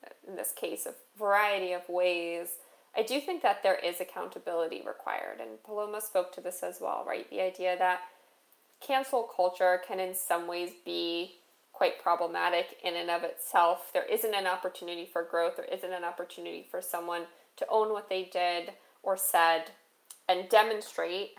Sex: female